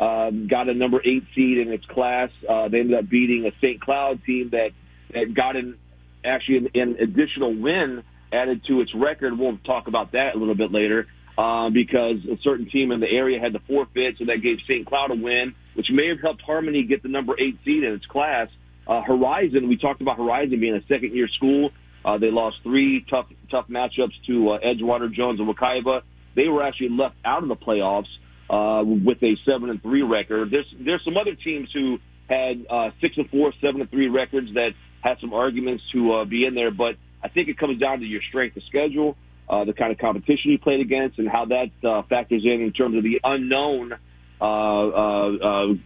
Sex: male